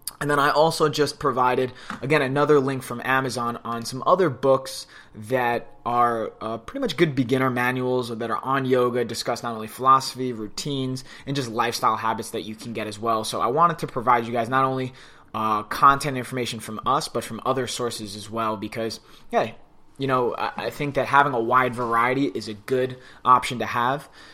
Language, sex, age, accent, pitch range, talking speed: English, male, 20-39, American, 115-145 Hz, 195 wpm